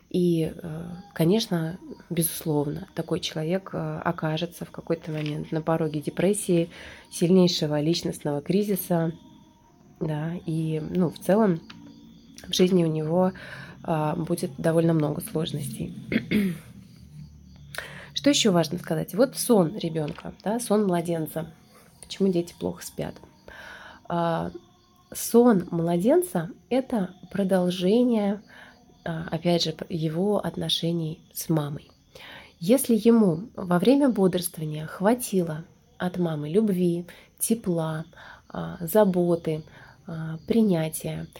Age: 20-39